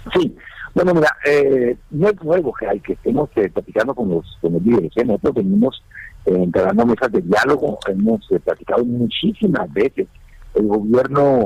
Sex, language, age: male, Spanish, 50-69